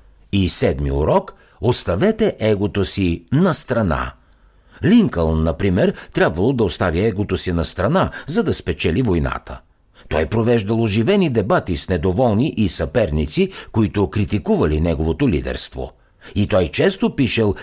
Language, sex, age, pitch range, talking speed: Bulgarian, male, 60-79, 85-135 Hz, 125 wpm